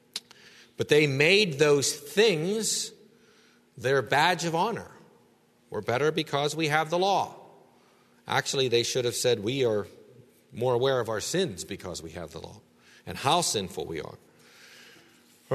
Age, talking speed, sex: 50-69, 150 wpm, male